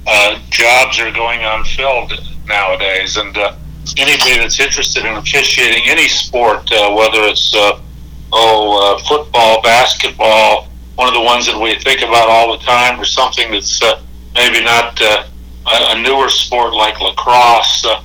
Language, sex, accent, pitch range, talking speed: English, male, American, 90-120 Hz, 155 wpm